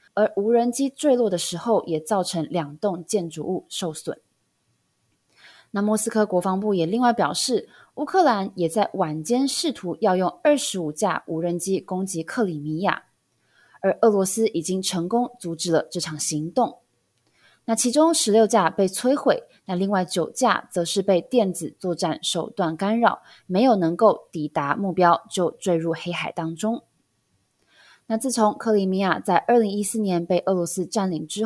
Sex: female